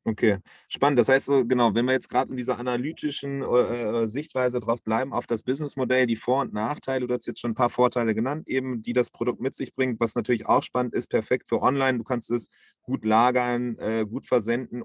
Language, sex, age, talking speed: English, male, 30-49, 220 wpm